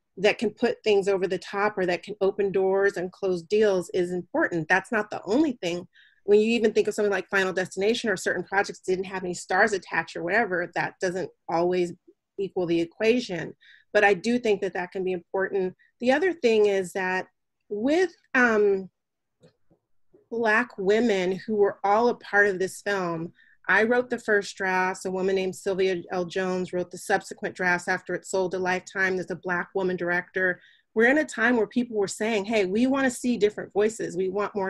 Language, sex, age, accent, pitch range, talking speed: English, female, 30-49, American, 185-220 Hz, 200 wpm